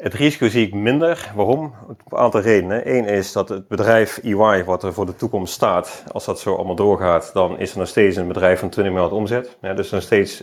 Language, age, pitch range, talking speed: Dutch, 40-59, 95-110 Hz, 240 wpm